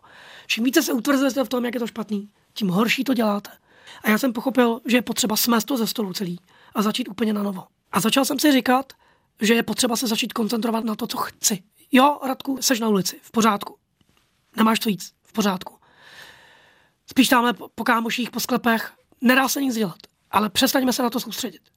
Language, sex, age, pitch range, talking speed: Czech, female, 20-39, 215-260 Hz, 205 wpm